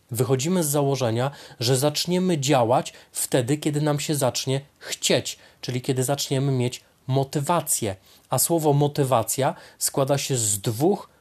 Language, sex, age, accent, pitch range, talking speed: Polish, male, 30-49, native, 130-165 Hz, 130 wpm